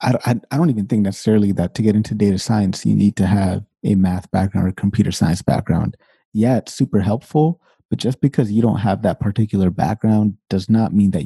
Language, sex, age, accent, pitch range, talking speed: English, male, 30-49, American, 95-110 Hz, 215 wpm